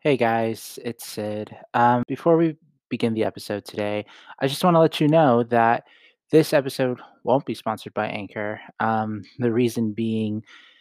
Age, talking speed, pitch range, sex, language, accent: 20-39, 165 wpm, 110-140 Hz, male, English, American